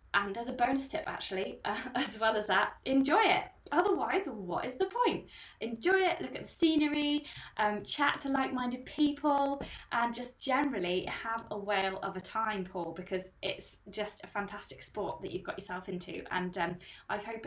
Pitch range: 185-235 Hz